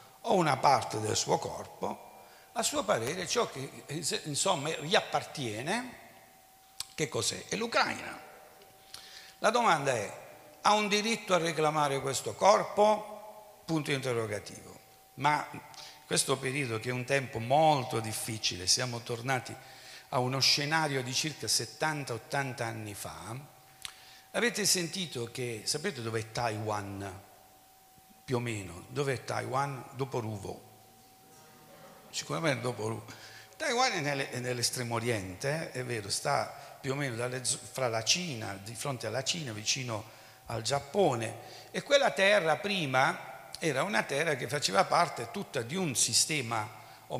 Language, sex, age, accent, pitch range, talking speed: Italian, male, 60-79, native, 115-155 Hz, 130 wpm